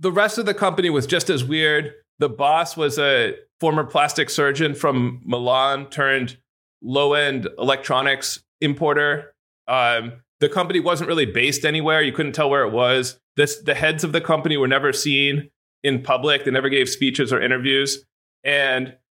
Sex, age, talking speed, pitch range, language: male, 30-49, 165 wpm, 130-165 Hz, English